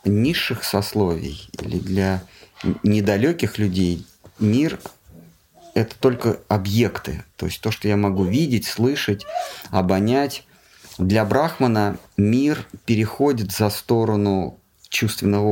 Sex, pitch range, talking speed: male, 95-110 Hz, 100 wpm